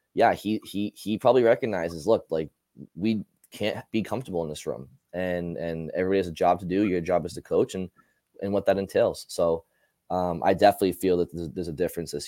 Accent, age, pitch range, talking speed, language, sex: American, 20-39, 85-100 Hz, 215 wpm, English, male